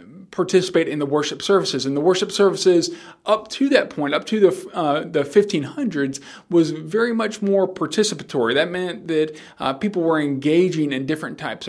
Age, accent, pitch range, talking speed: 40-59, American, 135-185 Hz, 175 wpm